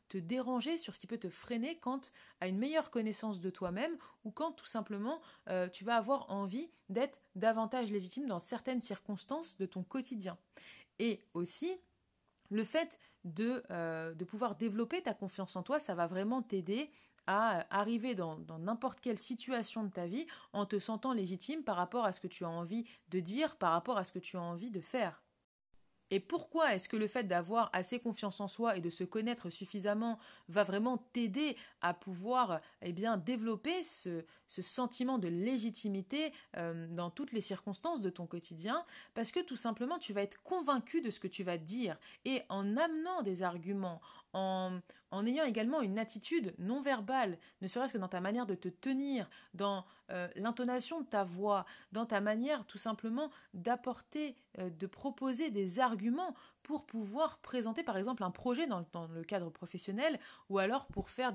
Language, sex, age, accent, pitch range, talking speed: French, female, 30-49, French, 185-255 Hz, 180 wpm